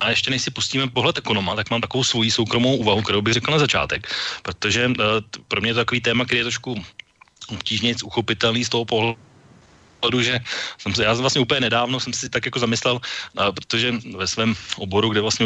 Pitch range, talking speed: 105-120 Hz, 195 wpm